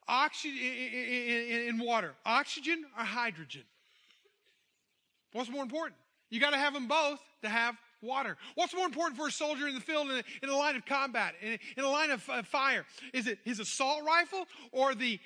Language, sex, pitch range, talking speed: English, male, 225-290 Hz, 195 wpm